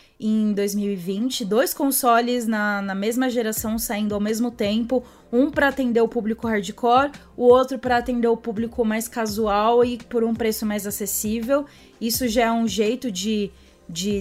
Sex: female